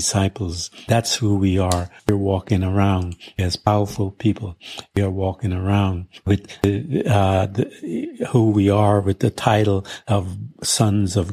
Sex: male